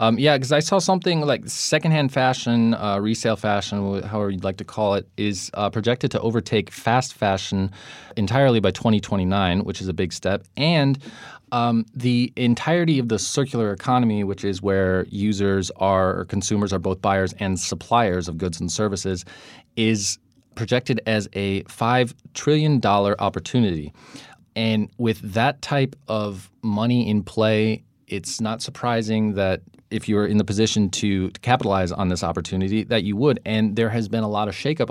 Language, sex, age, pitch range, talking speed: English, male, 20-39, 100-120 Hz, 165 wpm